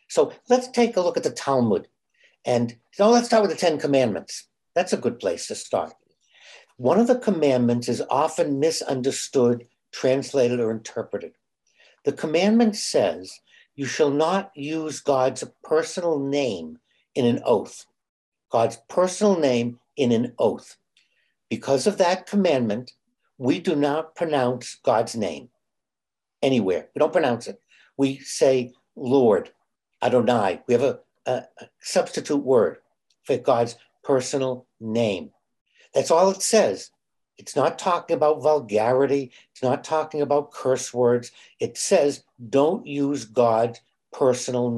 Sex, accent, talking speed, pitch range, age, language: male, American, 135 wpm, 125-175 Hz, 60-79, English